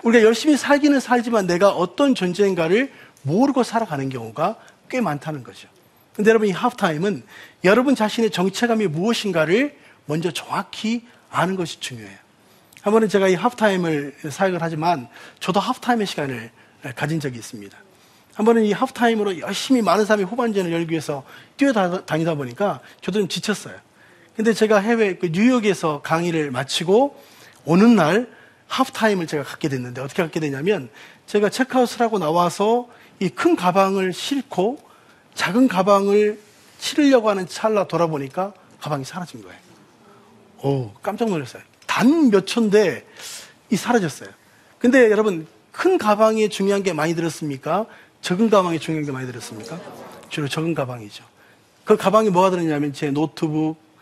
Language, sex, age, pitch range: Korean, male, 40-59, 155-220 Hz